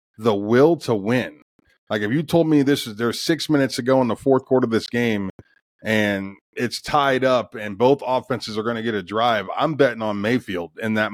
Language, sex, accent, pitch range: English, male, American, 105-130 Hz